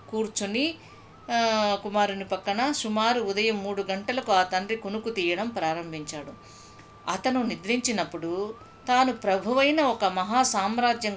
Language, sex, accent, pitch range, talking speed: Telugu, female, native, 170-225 Hz, 95 wpm